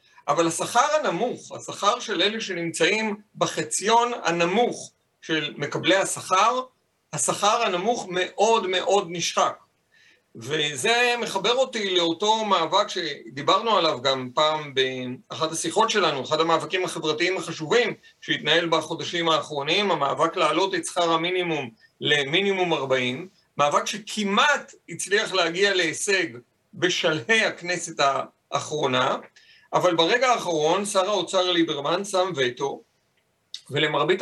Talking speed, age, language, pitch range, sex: 105 wpm, 50-69, Hebrew, 160-210 Hz, male